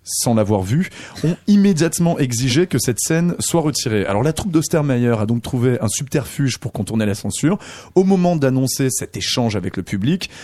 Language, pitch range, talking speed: French, 105-150 Hz, 185 wpm